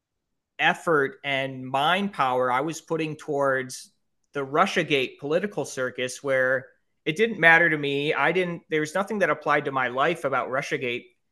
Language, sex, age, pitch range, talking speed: English, male, 30-49, 130-155 Hz, 160 wpm